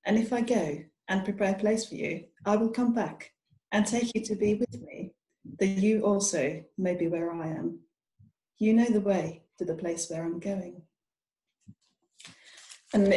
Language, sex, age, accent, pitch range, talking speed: English, female, 30-49, British, 175-215 Hz, 180 wpm